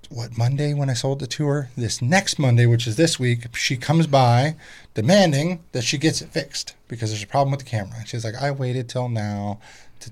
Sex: male